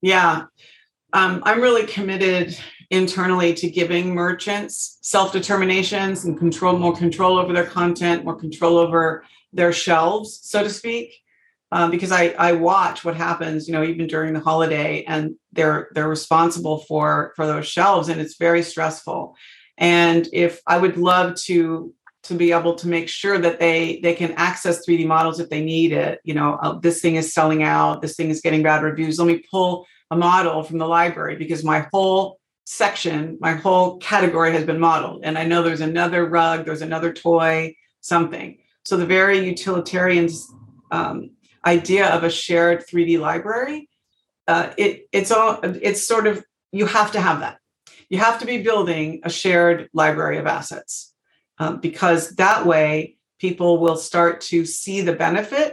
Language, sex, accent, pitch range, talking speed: English, female, American, 165-185 Hz, 170 wpm